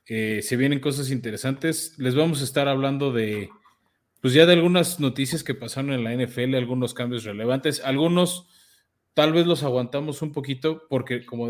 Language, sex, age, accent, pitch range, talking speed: Spanish, male, 30-49, Mexican, 120-140 Hz, 170 wpm